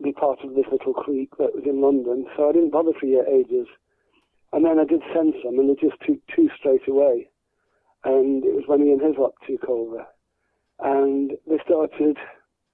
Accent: British